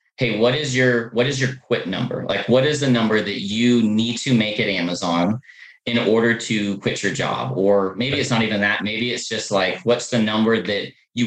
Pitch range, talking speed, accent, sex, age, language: 105-125 Hz, 225 wpm, American, male, 30-49, English